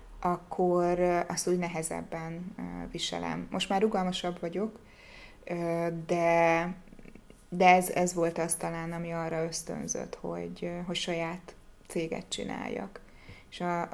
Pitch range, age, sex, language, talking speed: 170-185 Hz, 20-39, female, Hungarian, 110 wpm